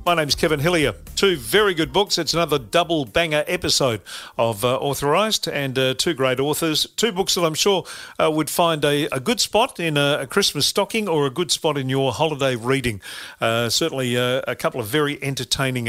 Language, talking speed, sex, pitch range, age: English, 200 wpm, male, 130-165 Hz, 50-69